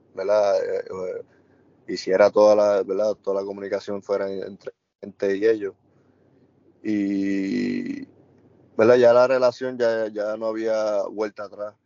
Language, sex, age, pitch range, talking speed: Spanish, male, 20-39, 100-125 Hz, 120 wpm